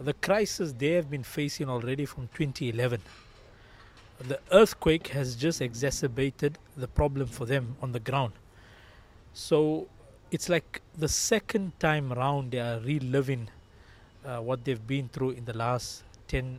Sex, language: male, English